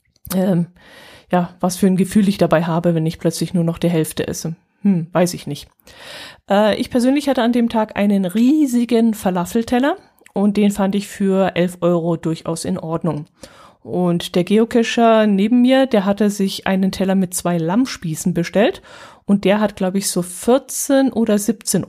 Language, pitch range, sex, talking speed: German, 175-220 Hz, female, 175 wpm